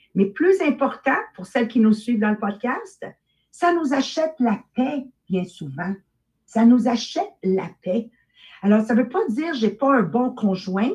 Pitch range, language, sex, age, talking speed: 210-270 Hz, English, female, 50-69, 195 wpm